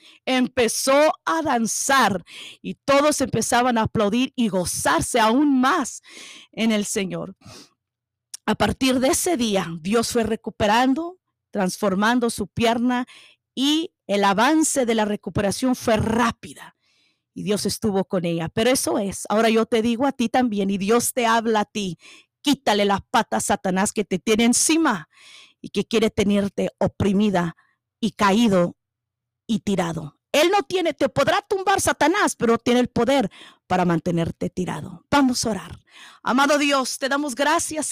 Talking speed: 150 wpm